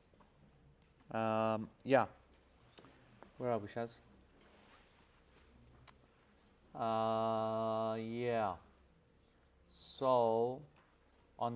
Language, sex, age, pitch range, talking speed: English, male, 40-59, 110-130 Hz, 55 wpm